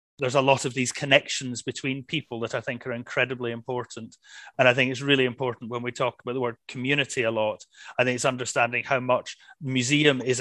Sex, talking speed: male, 215 wpm